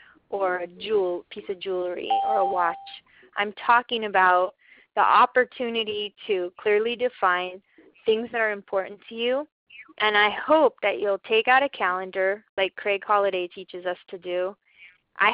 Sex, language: female, English